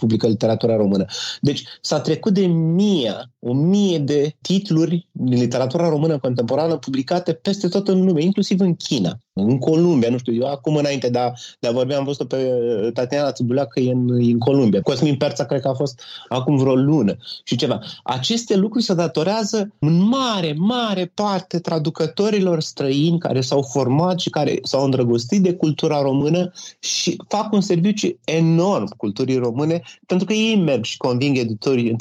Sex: male